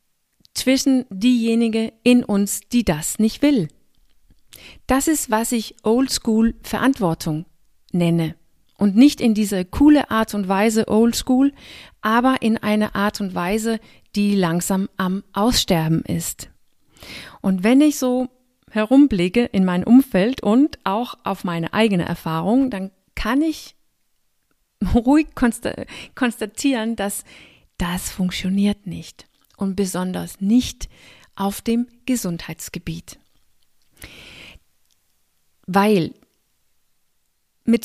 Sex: female